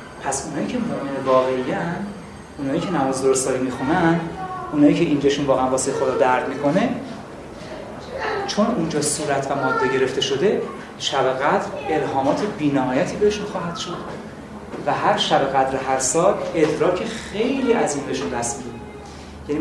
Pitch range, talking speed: 135-195 Hz, 140 wpm